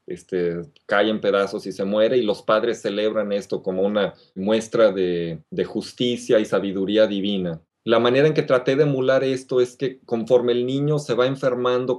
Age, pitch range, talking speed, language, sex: 30-49, 105-120 Hz, 185 wpm, Spanish, male